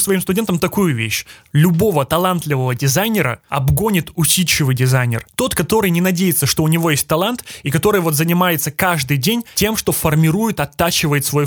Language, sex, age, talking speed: Russian, male, 20-39, 155 wpm